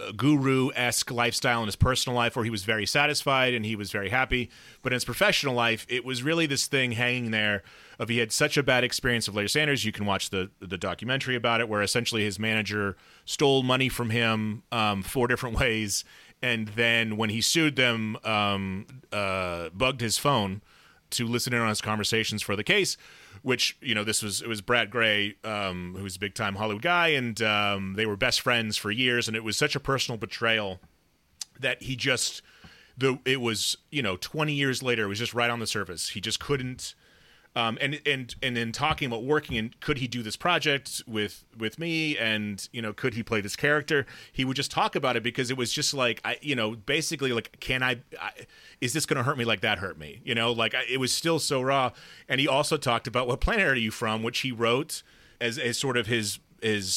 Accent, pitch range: American, 110-130 Hz